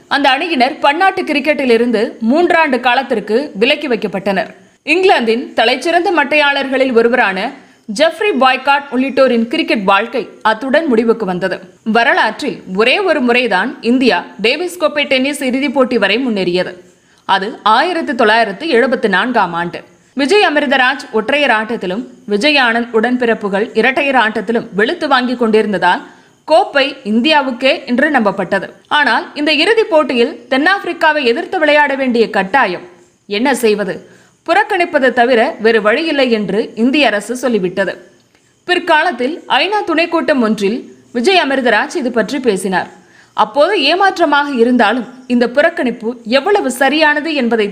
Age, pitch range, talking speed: 30-49, 225-295 Hz, 115 wpm